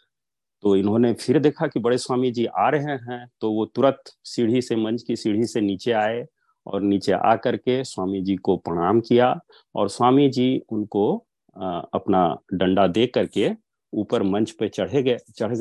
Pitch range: 110-165 Hz